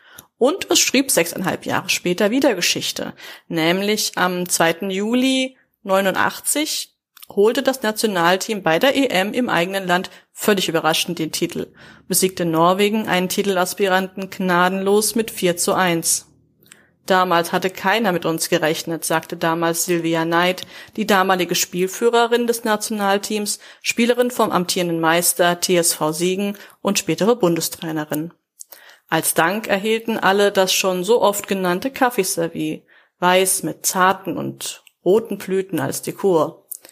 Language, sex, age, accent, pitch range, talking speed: German, female, 30-49, German, 170-205 Hz, 125 wpm